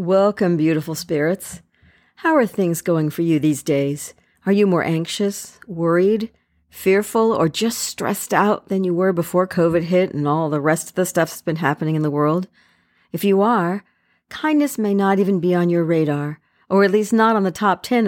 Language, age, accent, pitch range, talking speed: English, 50-69, American, 160-225 Hz, 195 wpm